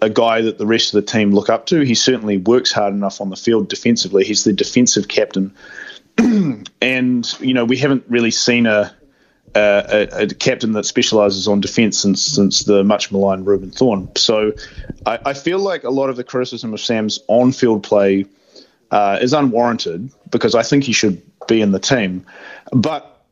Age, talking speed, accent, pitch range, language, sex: 30-49, 190 wpm, Australian, 100-130 Hz, English, male